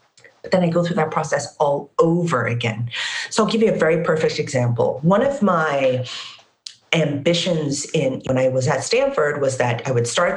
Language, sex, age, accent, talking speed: English, female, 40-59, American, 185 wpm